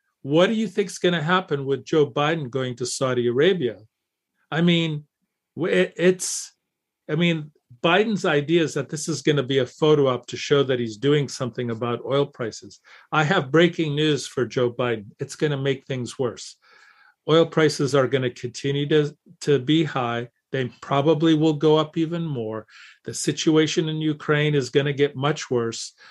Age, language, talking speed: 50-69, English, 185 wpm